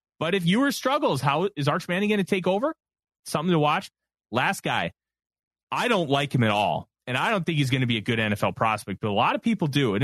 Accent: American